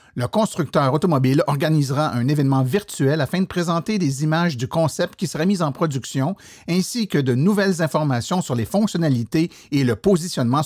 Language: French